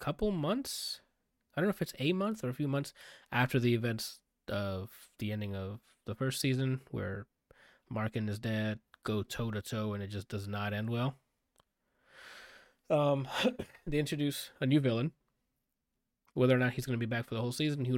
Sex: male